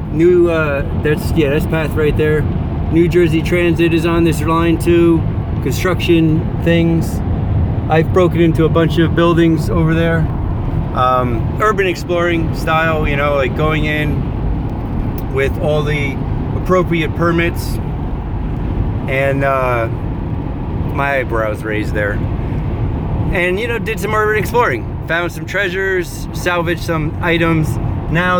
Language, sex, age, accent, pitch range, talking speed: English, male, 30-49, American, 115-165 Hz, 130 wpm